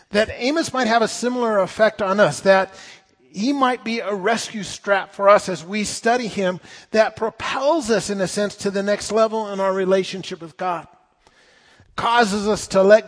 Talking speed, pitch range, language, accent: 190 wpm, 150-200 Hz, English, American